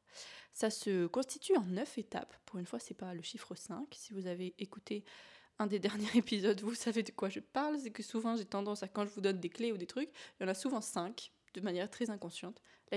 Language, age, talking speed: French, 20-39, 255 wpm